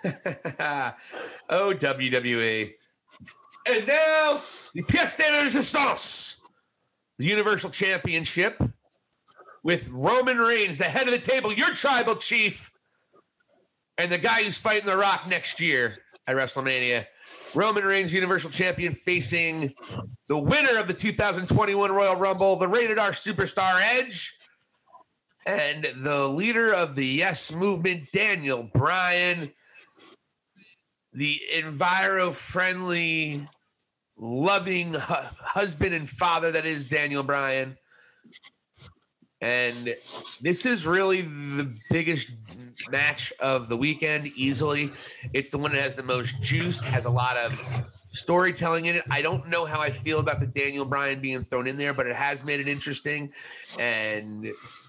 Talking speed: 125 wpm